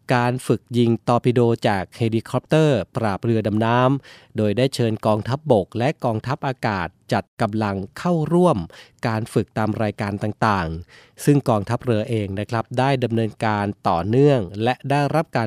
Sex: male